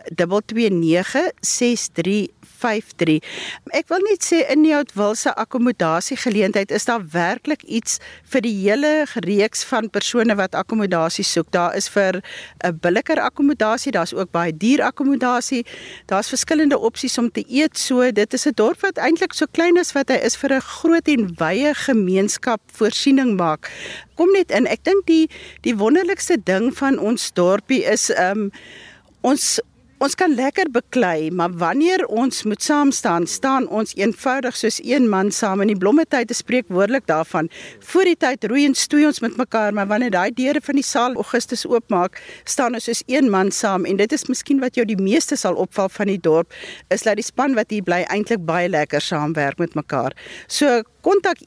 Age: 50-69